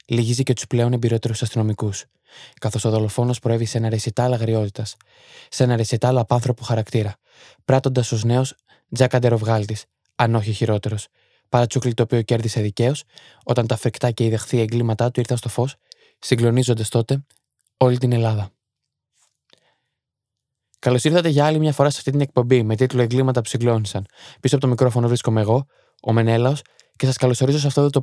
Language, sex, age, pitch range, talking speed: Greek, male, 20-39, 115-130 Hz, 165 wpm